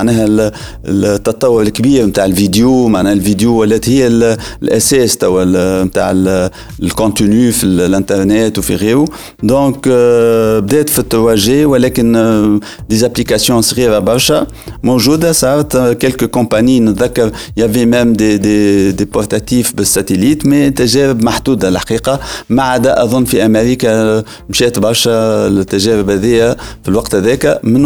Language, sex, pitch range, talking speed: Arabic, male, 105-130 Hz, 110 wpm